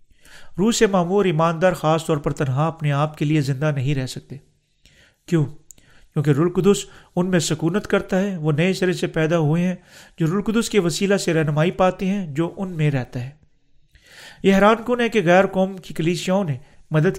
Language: Urdu